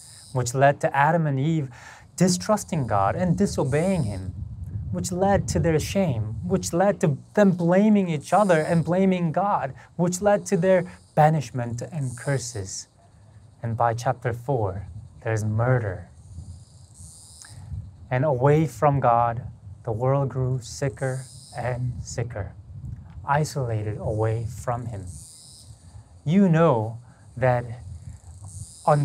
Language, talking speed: English, 120 wpm